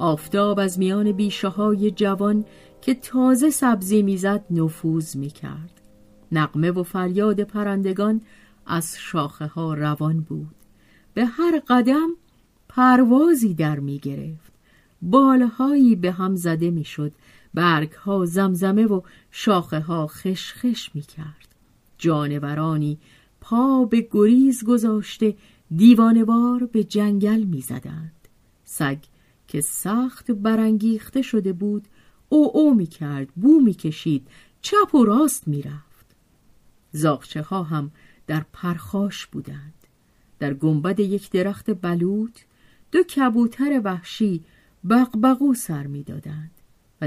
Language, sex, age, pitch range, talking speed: Persian, female, 40-59, 155-225 Hz, 105 wpm